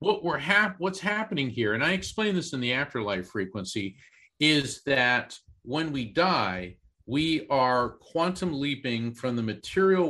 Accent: American